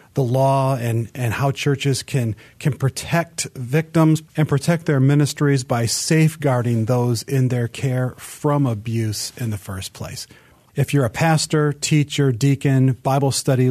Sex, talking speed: male, 150 wpm